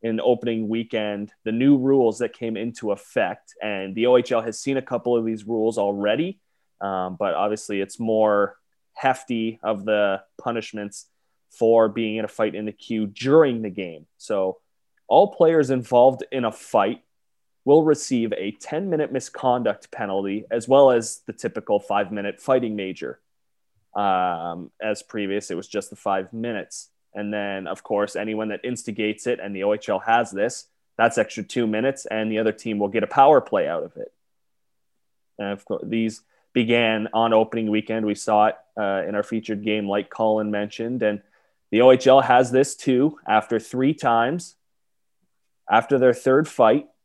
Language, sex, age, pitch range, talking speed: English, male, 20-39, 105-120 Hz, 170 wpm